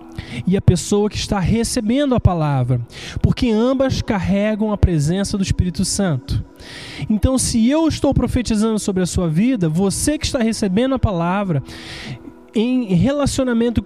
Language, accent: Portuguese, Brazilian